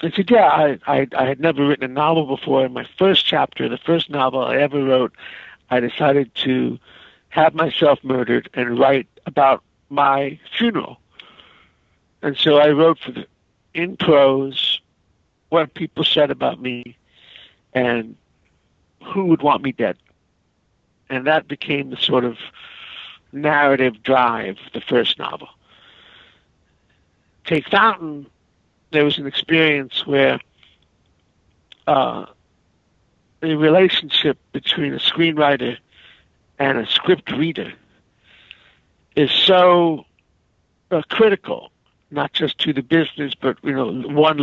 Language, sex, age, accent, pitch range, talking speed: English, male, 60-79, American, 120-155 Hz, 125 wpm